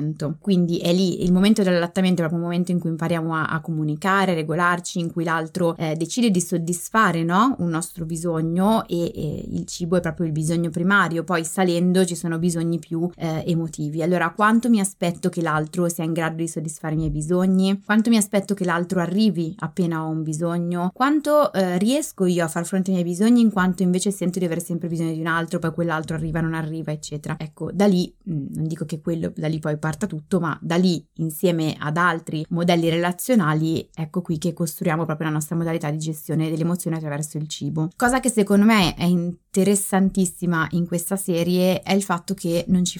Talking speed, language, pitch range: 205 wpm, Italian, 160-190 Hz